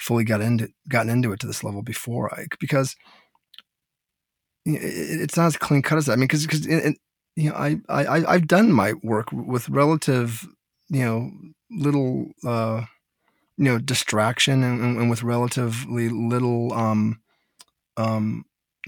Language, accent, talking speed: English, American, 160 wpm